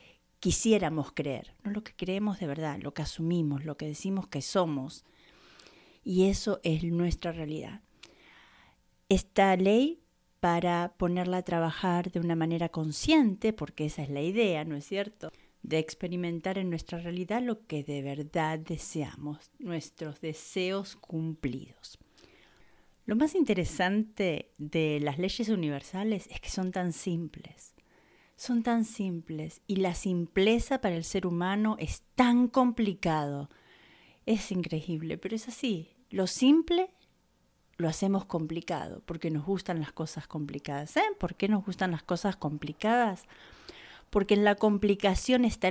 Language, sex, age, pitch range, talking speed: Spanish, female, 40-59, 160-205 Hz, 140 wpm